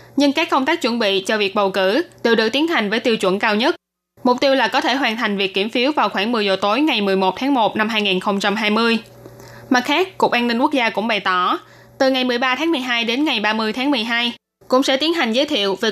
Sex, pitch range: female, 210-270 Hz